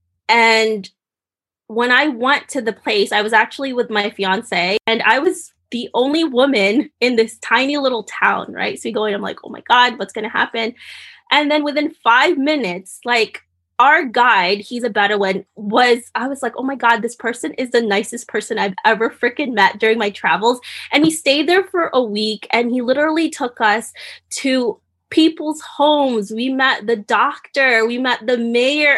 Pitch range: 225-280 Hz